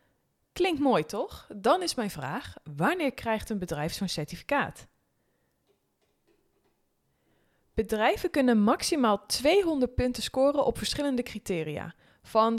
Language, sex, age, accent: Dutch, female, 20-39, Dutch